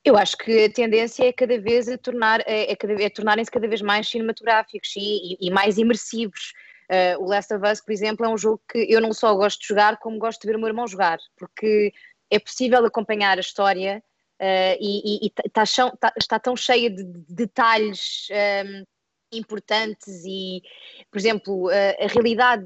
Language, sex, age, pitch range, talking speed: English, female, 20-39, 205-240 Hz, 170 wpm